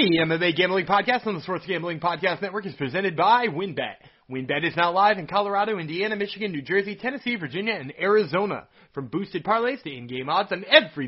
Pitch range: 155-230 Hz